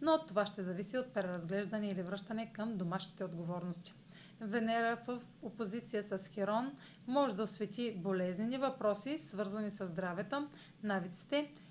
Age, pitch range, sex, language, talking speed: 40-59, 185-235 Hz, female, Bulgarian, 135 wpm